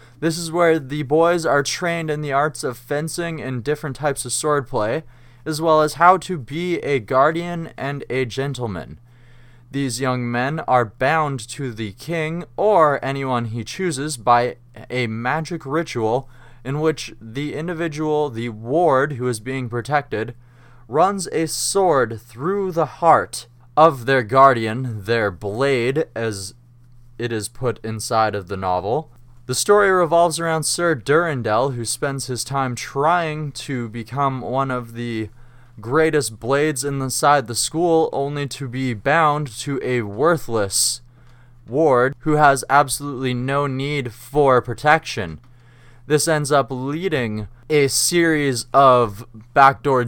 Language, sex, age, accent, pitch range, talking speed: English, male, 20-39, American, 120-150 Hz, 140 wpm